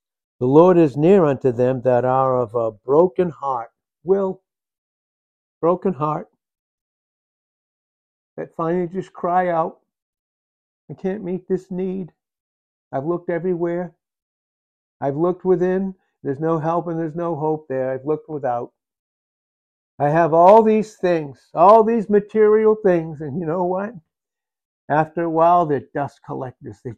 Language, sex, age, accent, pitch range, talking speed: English, male, 60-79, American, 125-170 Hz, 140 wpm